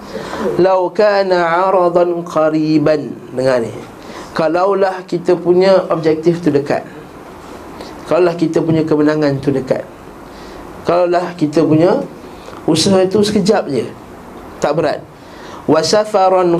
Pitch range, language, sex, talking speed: 155-215 Hz, Malay, male, 110 wpm